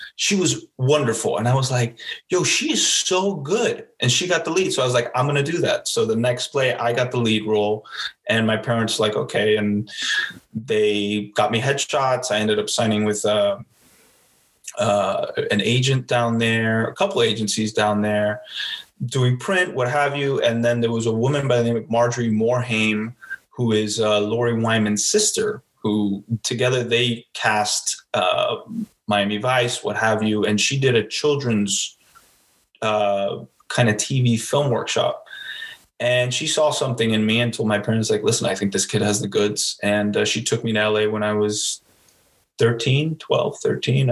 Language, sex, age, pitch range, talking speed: English, male, 20-39, 105-125 Hz, 185 wpm